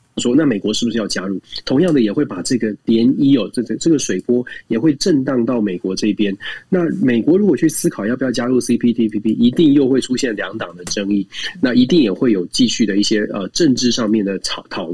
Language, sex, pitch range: Chinese, male, 110-170 Hz